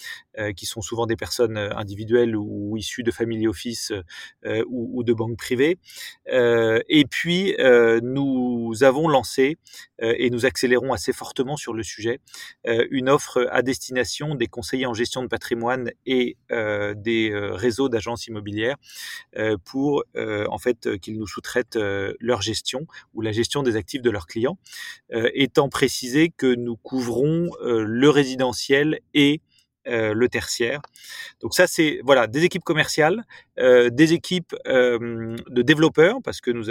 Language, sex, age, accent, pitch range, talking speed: French, male, 30-49, French, 110-135 Hz, 140 wpm